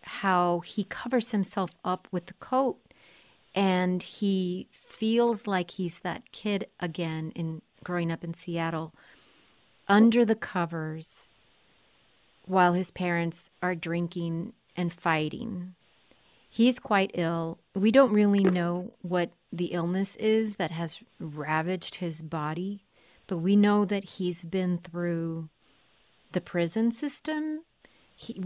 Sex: female